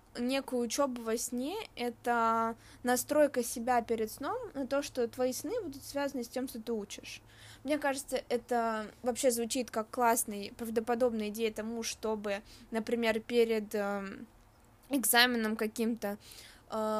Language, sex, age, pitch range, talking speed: Russian, female, 20-39, 225-255 Hz, 125 wpm